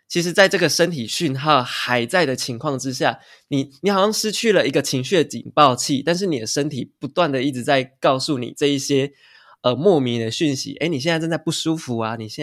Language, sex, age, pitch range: Chinese, male, 20-39, 120-150 Hz